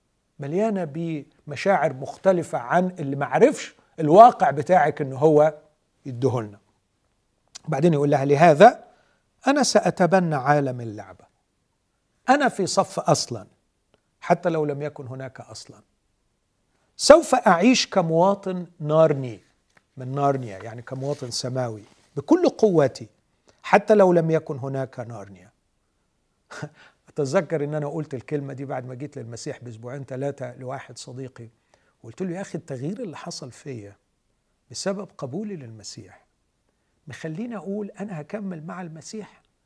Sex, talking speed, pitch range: male, 115 wpm, 135-200 Hz